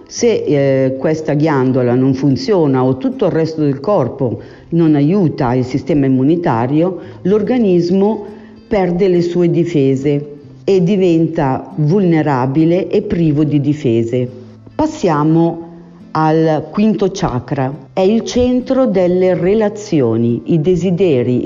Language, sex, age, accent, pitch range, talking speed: Italian, female, 50-69, native, 135-185 Hz, 110 wpm